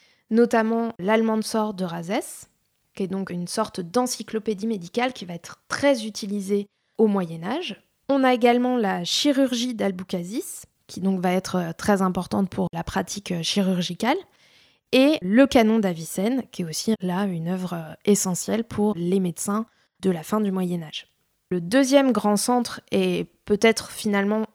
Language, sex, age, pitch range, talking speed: French, female, 20-39, 190-240 Hz, 150 wpm